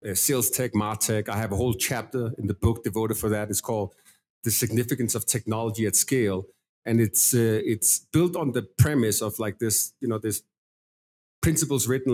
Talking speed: 195 wpm